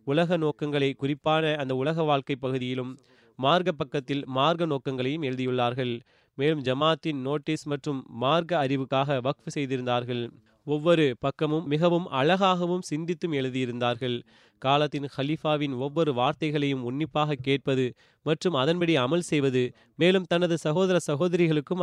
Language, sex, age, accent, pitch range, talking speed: Tamil, male, 30-49, native, 130-155 Hz, 105 wpm